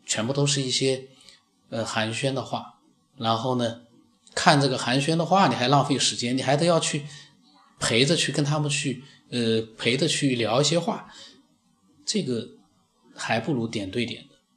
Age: 20-39